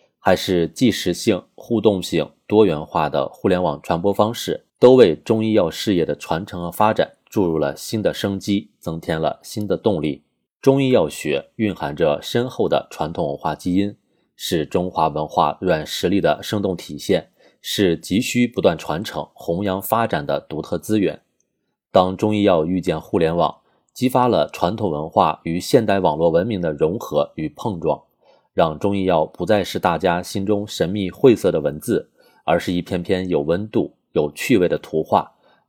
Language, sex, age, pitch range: Chinese, male, 30-49, 85-110 Hz